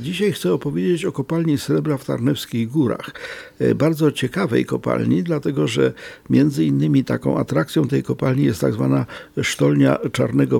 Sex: male